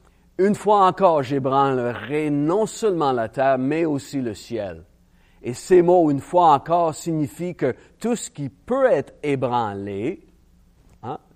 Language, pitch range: French, 115-155 Hz